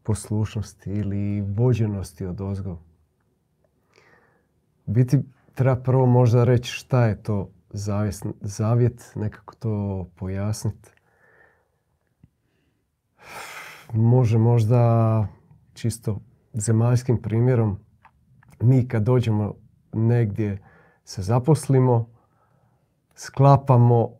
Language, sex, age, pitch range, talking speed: Croatian, male, 40-59, 105-130 Hz, 70 wpm